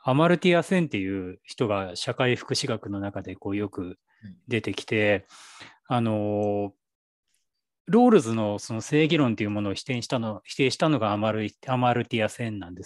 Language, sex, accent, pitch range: Japanese, male, native, 105-145 Hz